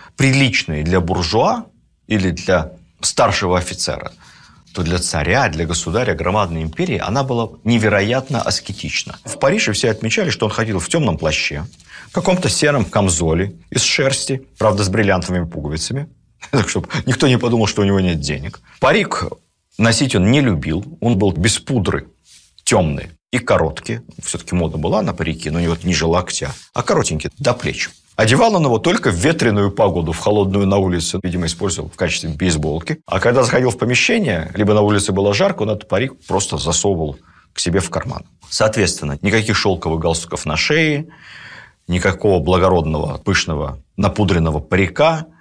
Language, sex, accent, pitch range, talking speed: Russian, male, native, 85-120 Hz, 160 wpm